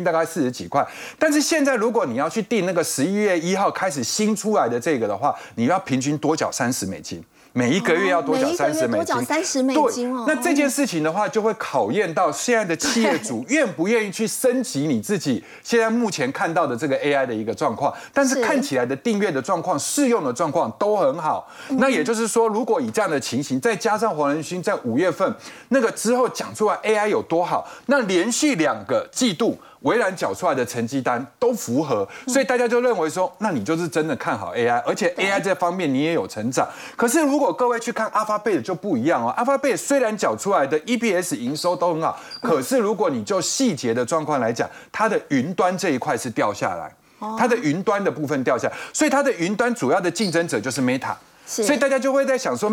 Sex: male